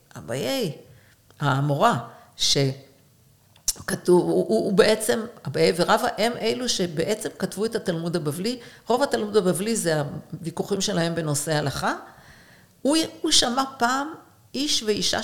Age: 50-69